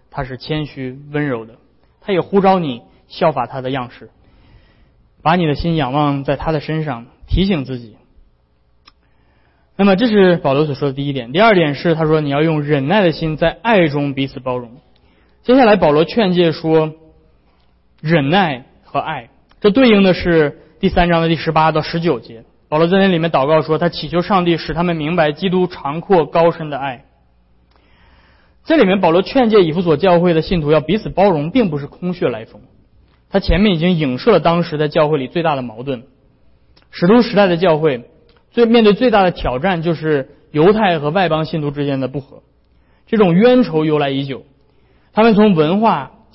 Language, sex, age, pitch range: Chinese, male, 20-39, 140-185 Hz